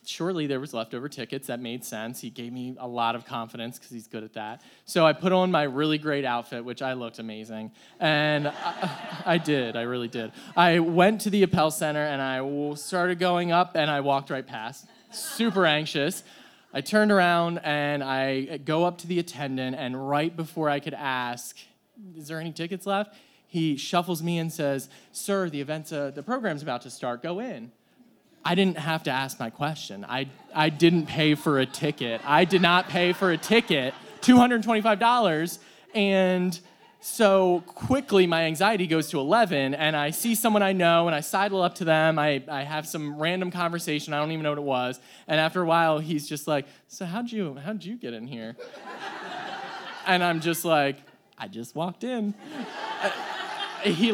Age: 20-39